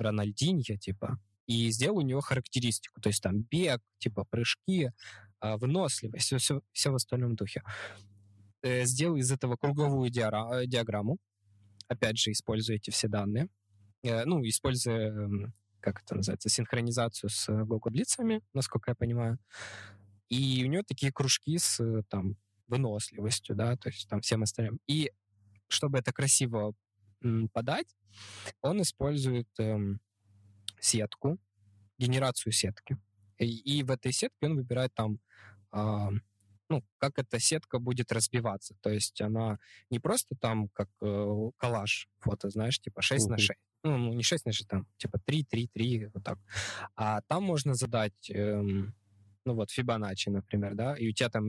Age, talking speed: 20-39, 145 wpm